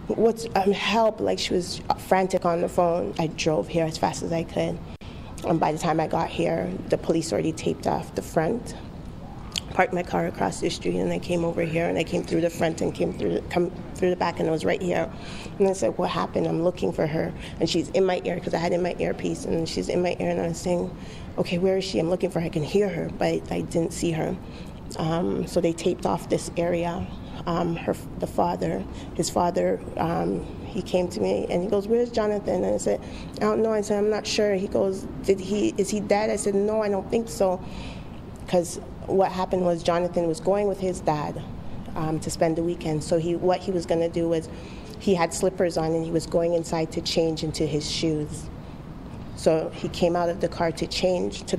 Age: 20-39